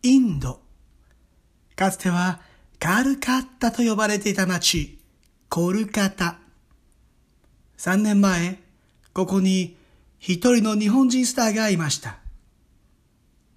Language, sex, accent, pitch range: Japanese, male, native, 165-230 Hz